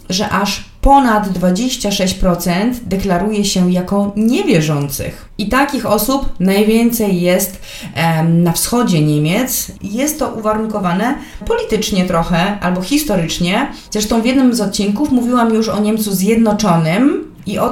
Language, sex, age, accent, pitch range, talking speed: Polish, female, 30-49, native, 180-230 Hz, 120 wpm